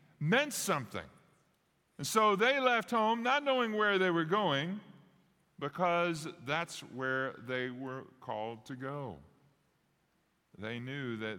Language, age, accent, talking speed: English, 50-69, American, 125 wpm